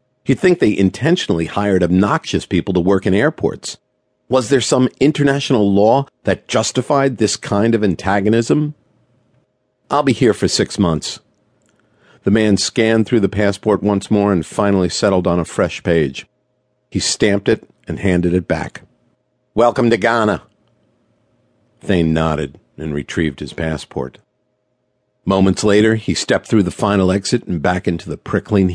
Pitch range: 90-115 Hz